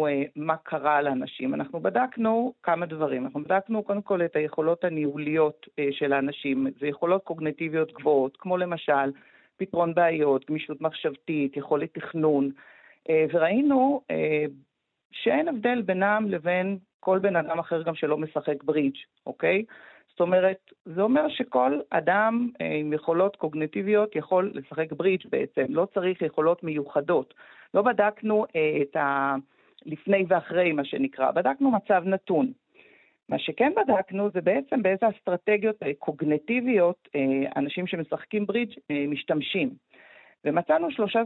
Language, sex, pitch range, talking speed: Hebrew, female, 150-200 Hz, 120 wpm